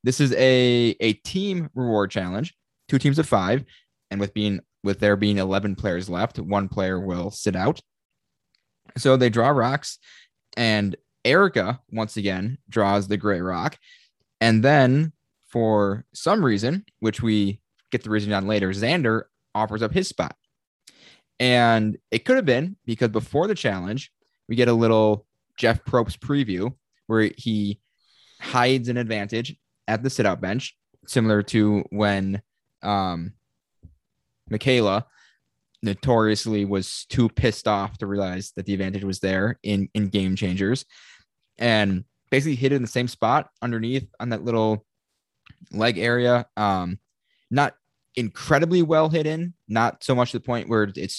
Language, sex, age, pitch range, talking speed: English, male, 20-39, 100-125 Hz, 150 wpm